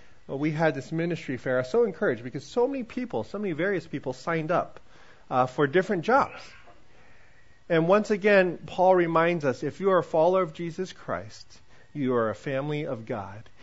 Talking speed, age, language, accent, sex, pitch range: 195 wpm, 40-59, English, American, male, 145-215 Hz